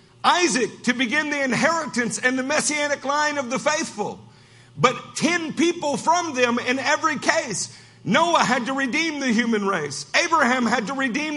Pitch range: 215-280 Hz